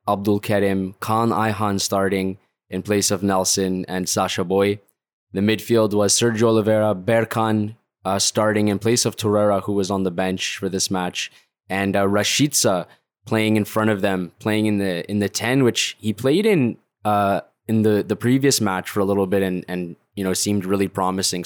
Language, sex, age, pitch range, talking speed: English, male, 10-29, 95-110 Hz, 185 wpm